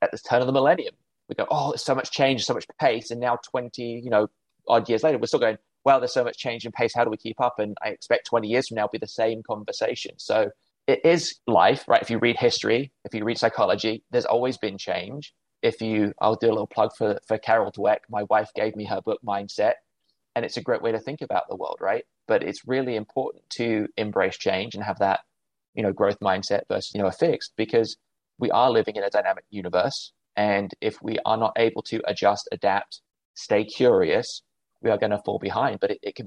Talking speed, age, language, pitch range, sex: 240 wpm, 20-39, English, 105-125 Hz, male